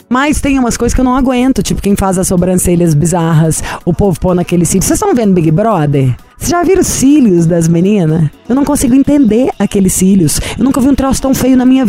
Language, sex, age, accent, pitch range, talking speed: Portuguese, female, 20-39, Brazilian, 185-260 Hz, 230 wpm